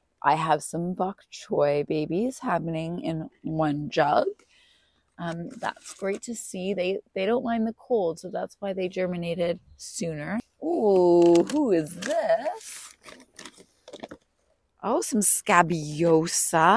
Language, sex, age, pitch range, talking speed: English, female, 30-49, 160-220 Hz, 120 wpm